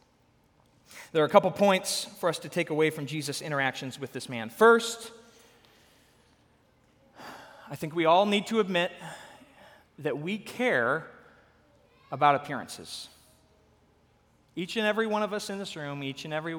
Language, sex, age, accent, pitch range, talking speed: English, male, 30-49, American, 135-200 Hz, 150 wpm